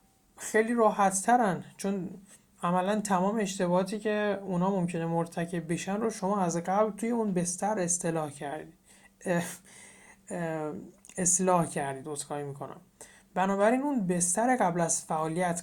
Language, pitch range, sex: Persian, 160-195 Hz, male